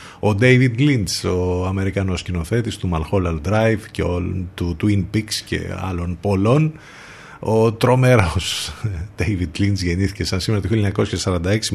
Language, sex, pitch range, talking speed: Greek, male, 90-115 Hz, 125 wpm